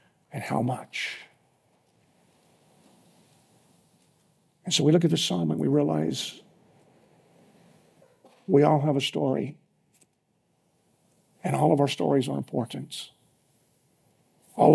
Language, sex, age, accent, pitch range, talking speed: English, male, 50-69, American, 140-170 Hz, 105 wpm